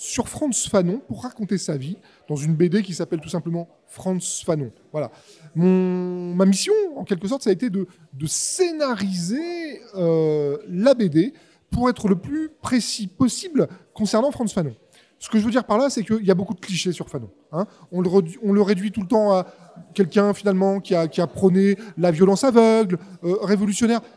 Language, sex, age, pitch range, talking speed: Arabic, male, 20-39, 175-235 Hz, 195 wpm